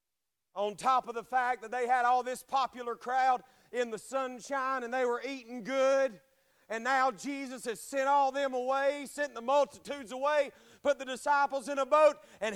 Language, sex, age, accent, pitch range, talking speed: English, male, 40-59, American, 225-290 Hz, 185 wpm